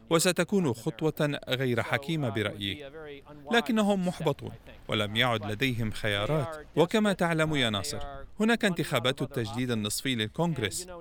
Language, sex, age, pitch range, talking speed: Arabic, male, 40-59, 115-160 Hz, 110 wpm